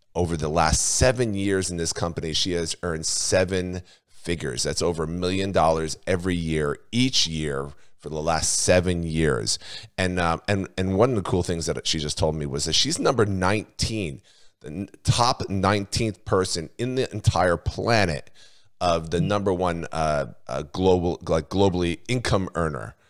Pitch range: 80-100 Hz